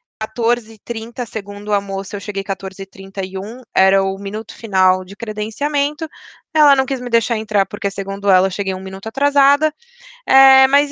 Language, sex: Portuguese, female